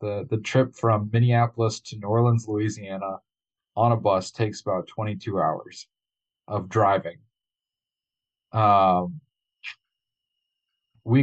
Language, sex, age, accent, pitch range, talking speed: English, male, 40-59, American, 105-125 Hz, 105 wpm